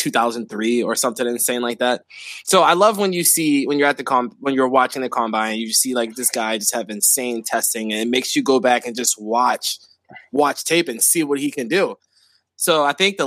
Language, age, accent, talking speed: English, 20-39, American, 235 wpm